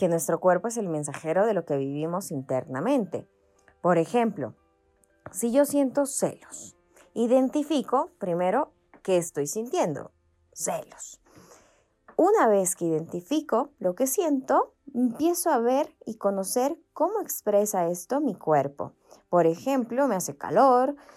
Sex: female